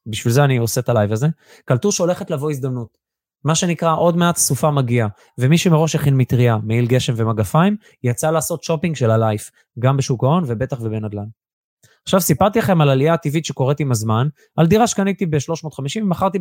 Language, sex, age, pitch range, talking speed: Hebrew, male, 20-39, 120-165 Hz, 175 wpm